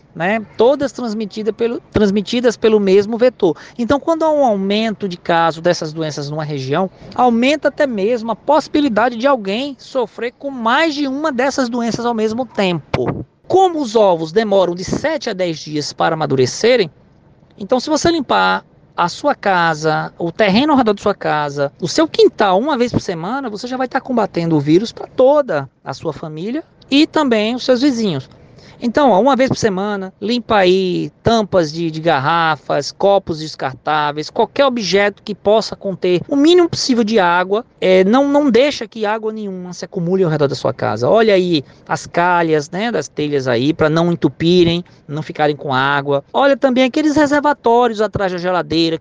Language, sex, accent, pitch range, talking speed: Portuguese, male, Brazilian, 160-245 Hz, 175 wpm